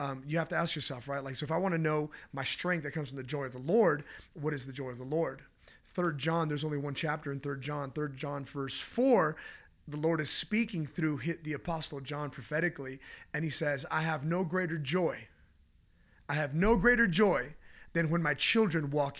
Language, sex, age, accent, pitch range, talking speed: English, male, 30-49, American, 145-185 Hz, 225 wpm